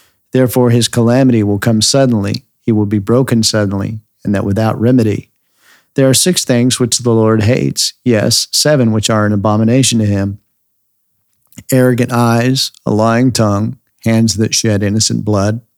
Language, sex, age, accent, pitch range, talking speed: English, male, 50-69, American, 105-120 Hz, 155 wpm